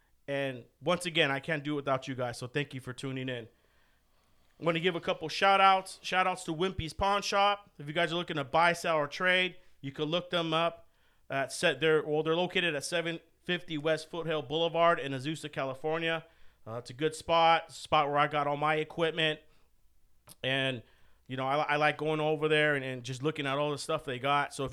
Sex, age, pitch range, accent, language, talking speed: male, 40-59, 140-165 Hz, American, English, 225 wpm